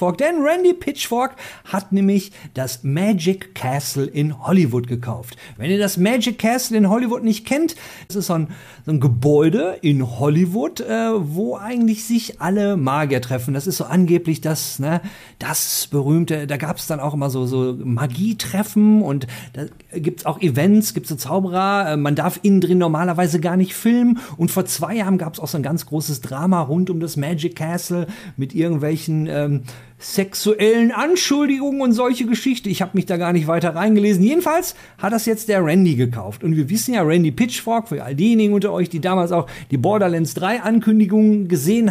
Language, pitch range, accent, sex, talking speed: German, 150-210 Hz, German, male, 180 wpm